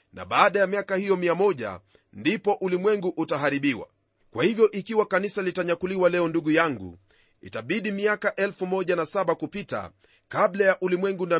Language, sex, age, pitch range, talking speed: Swahili, male, 40-59, 160-195 Hz, 145 wpm